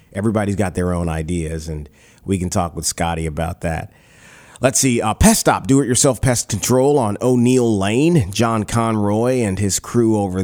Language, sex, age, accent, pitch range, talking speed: English, male, 30-49, American, 95-120 Hz, 175 wpm